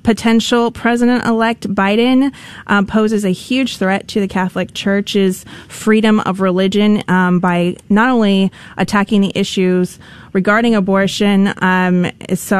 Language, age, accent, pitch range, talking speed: English, 30-49, American, 185-220 Hz, 130 wpm